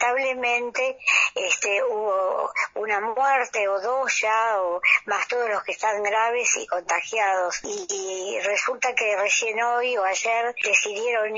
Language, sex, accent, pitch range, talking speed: Spanish, male, Argentinian, 200-240 Hz, 135 wpm